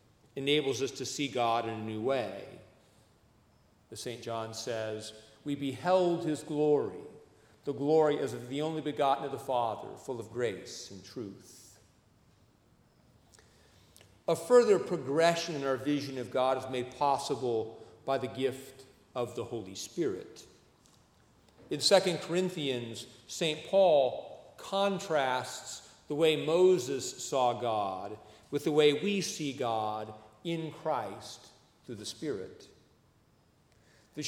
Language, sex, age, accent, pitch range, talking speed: English, male, 40-59, American, 115-155 Hz, 130 wpm